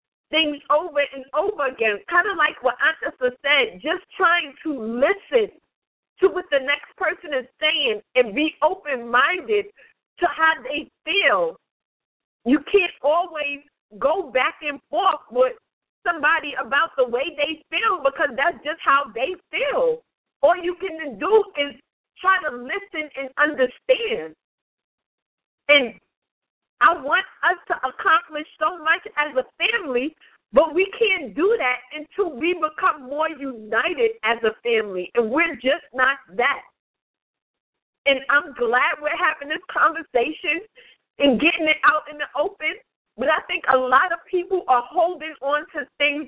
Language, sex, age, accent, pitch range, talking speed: English, female, 40-59, American, 270-350 Hz, 150 wpm